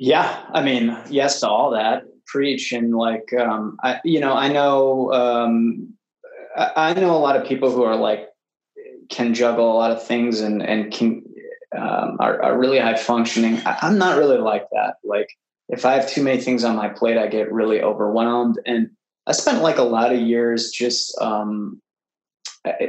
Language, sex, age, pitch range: English, male, 20-39, 115-135 Hz